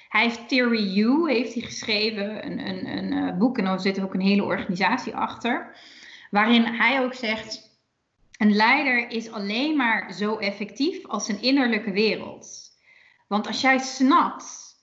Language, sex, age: Dutch, female, 30-49